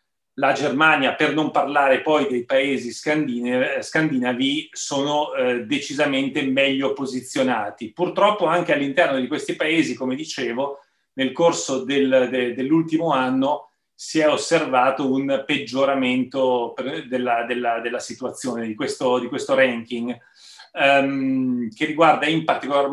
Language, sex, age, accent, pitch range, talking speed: Italian, male, 30-49, native, 125-155 Hz, 110 wpm